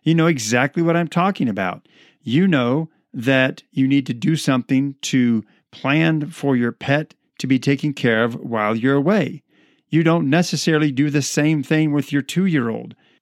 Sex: male